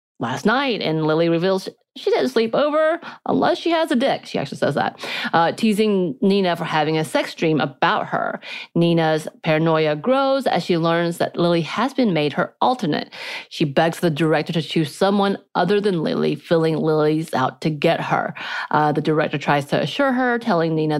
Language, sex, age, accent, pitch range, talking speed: English, female, 30-49, American, 155-220 Hz, 190 wpm